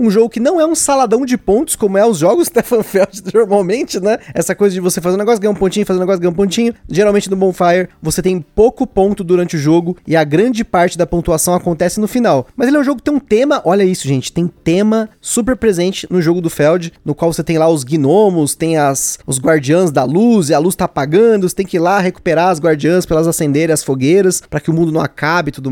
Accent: Brazilian